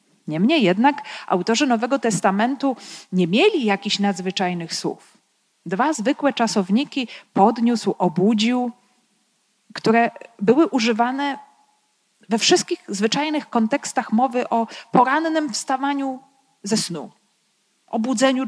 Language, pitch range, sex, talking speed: Polish, 190-235 Hz, female, 95 wpm